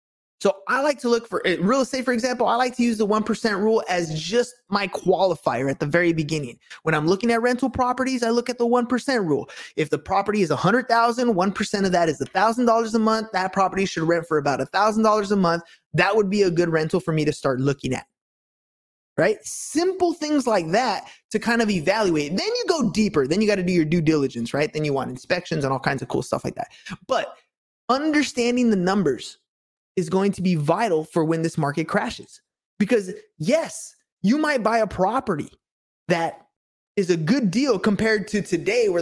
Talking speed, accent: 205 wpm, American